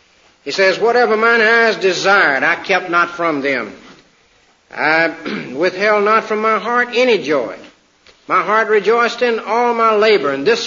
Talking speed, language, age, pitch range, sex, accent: 155 wpm, English, 60-79, 125-180 Hz, male, American